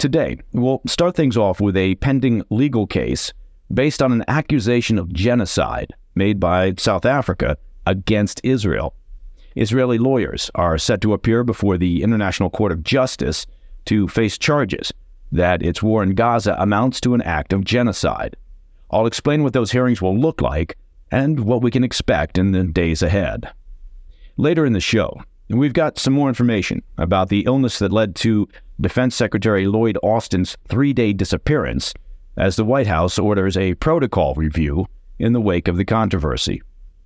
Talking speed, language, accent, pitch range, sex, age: 160 wpm, English, American, 90-120 Hz, male, 50-69